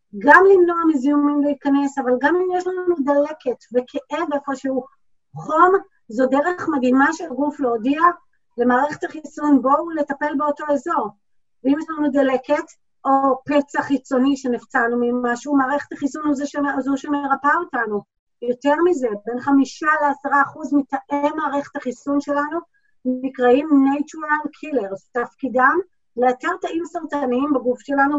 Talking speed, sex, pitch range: 130 wpm, female, 260-305 Hz